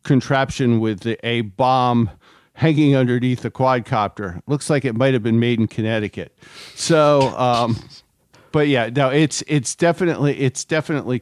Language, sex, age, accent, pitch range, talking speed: English, male, 50-69, American, 115-150 Hz, 145 wpm